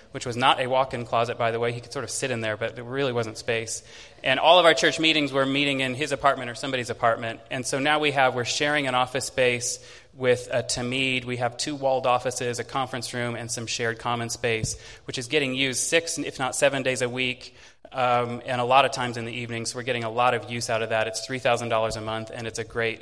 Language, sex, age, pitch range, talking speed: English, male, 20-39, 115-135 Hz, 260 wpm